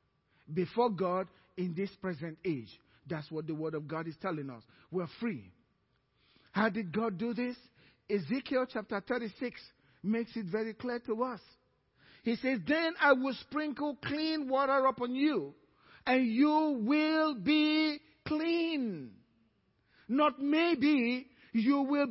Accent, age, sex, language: Nigerian, 50-69, male, English